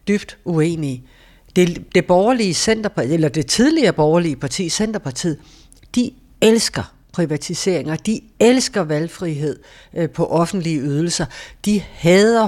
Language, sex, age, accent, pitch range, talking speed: Danish, female, 60-79, native, 155-215 Hz, 110 wpm